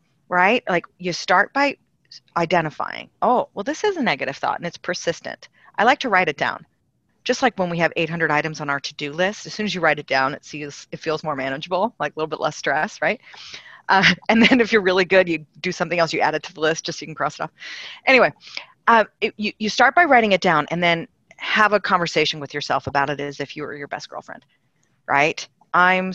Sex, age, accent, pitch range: female, 40-59, American, 155-215 Hz